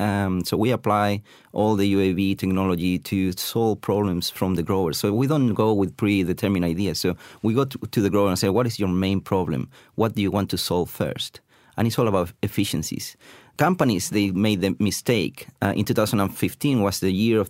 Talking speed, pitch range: 200 wpm, 95-115 Hz